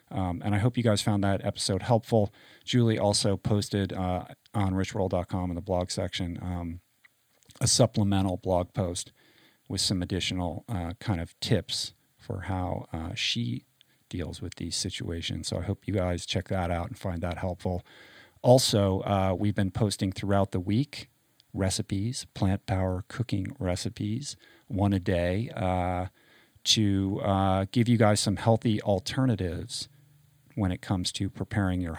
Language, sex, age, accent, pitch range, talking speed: English, male, 40-59, American, 90-110 Hz, 155 wpm